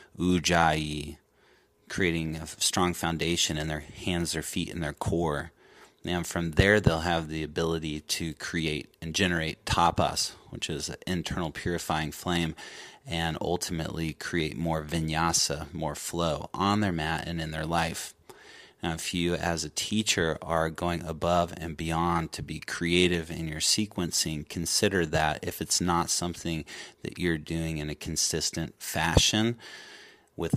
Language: English